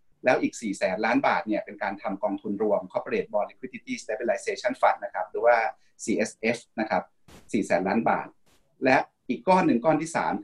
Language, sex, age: Thai, male, 30-49